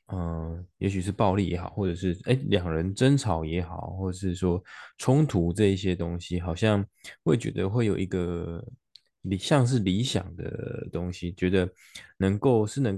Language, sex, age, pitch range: Chinese, male, 20-39, 90-115 Hz